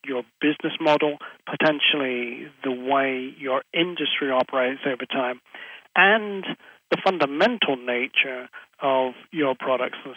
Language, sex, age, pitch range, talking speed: English, male, 40-59, 135-185 Hz, 110 wpm